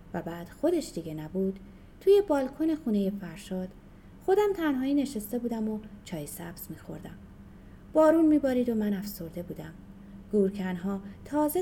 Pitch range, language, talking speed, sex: 185-285 Hz, Persian, 130 wpm, female